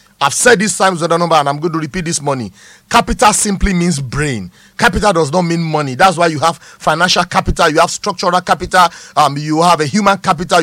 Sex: male